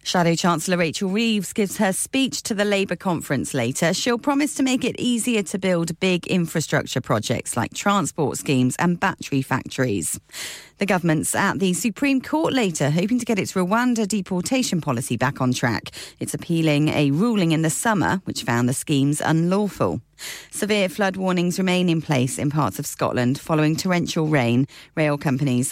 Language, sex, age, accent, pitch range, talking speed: English, female, 40-59, British, 150-210 Hz, 170 wpm